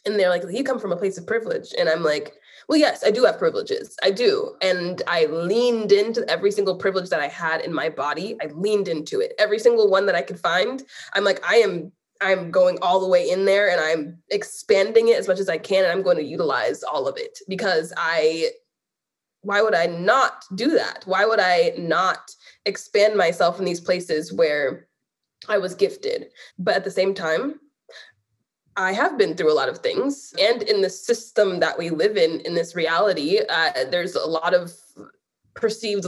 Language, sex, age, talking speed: English, female, 20-39, 205 wpm